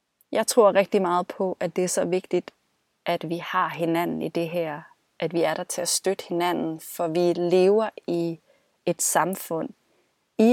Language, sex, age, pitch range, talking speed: Danish, female, 30-49, 170-205 Hz, 180 wpm